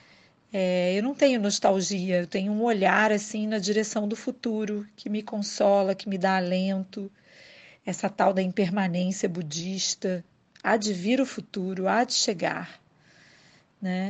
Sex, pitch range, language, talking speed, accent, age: female, 185-210 Hz, Portuguese, 150 wpm, Brazilian, 40-59